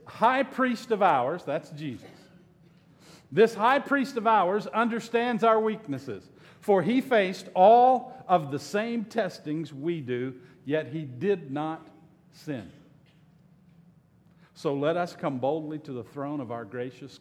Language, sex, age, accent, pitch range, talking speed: English, male, 50-69, American, 145-195 Hz, 140 wpm